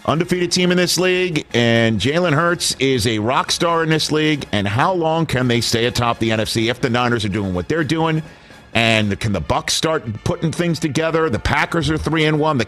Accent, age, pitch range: American, 50-69, 100-155 Hz